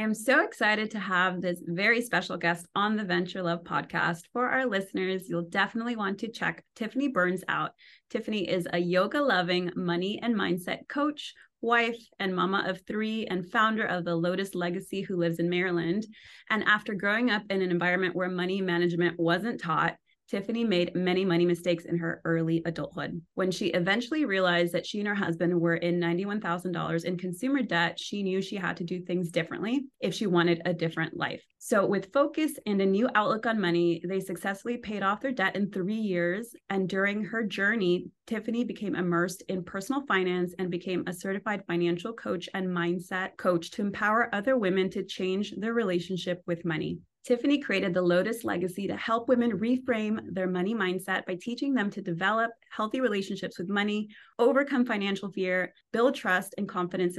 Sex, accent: female, American